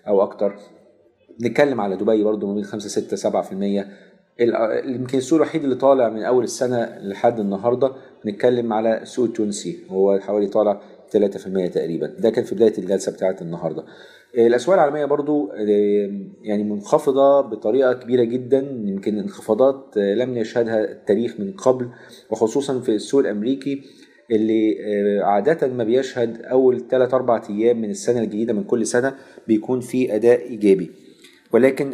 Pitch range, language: 105-125 Hz, Arabic